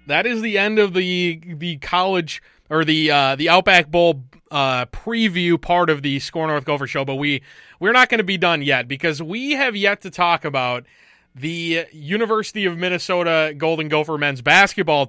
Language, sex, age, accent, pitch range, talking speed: English, male, 20-39, American, 155-215 Hz, 185 wpm